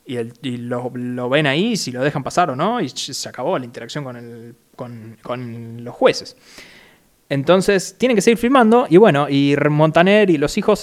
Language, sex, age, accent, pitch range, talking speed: Spanish, male, 20-39, Argentinian, 125-160 Hz, 200 wpm